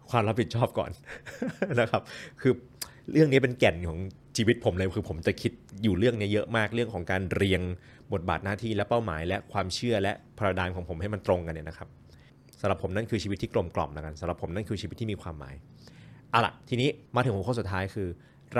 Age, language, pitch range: 30-49, Thai, 95-125 Hz